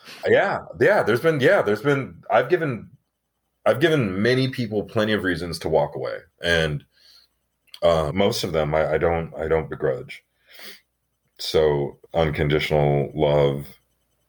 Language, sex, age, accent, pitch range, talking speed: English, male, 30-49, American, 70-85 Hz, 140 wpm